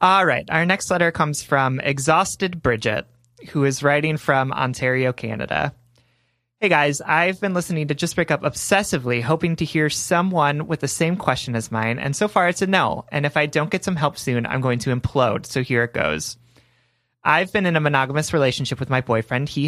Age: 30-49